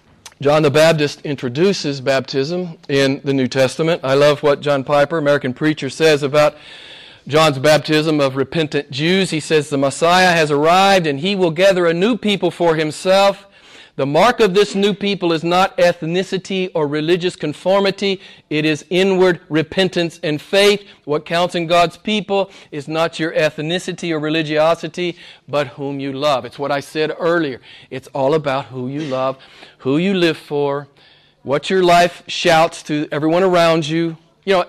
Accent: American